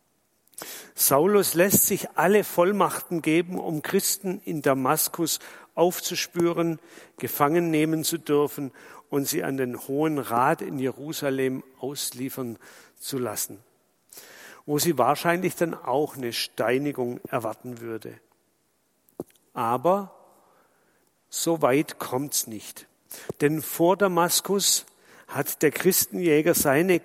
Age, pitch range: 50-69, 130-170 Hz